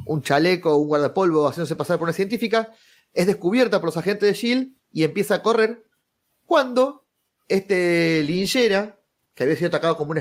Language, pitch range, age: Spanish, 160-225 Hz, 30-49